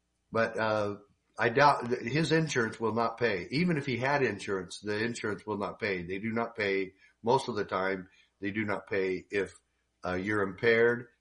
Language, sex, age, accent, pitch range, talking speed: English, male, 50-69, American, 95-115 Hz, 195 wpm